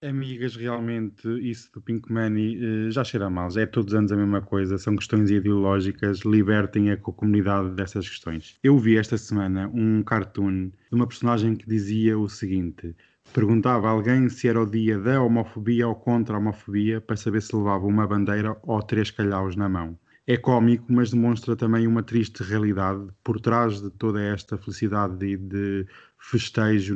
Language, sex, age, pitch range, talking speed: Portuguese, male, 20-39, 100-115 Hz, 180 wpm